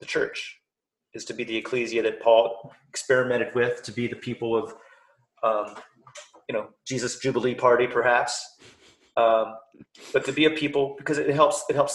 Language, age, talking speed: English, 30-49, 170 wpm